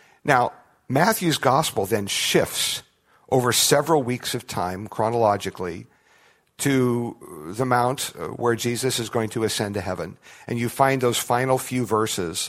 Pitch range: 110-140 Hz